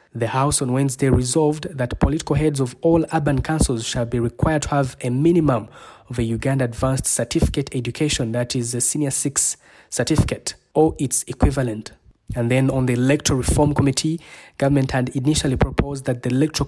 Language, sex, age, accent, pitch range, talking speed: English, male, 20-39, South African, 125-145 Hz, 175 wpm